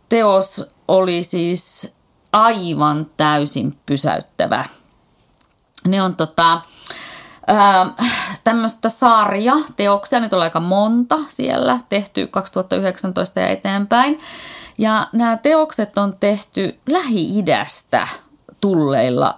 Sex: female